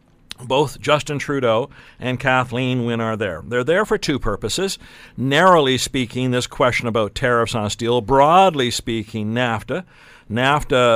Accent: American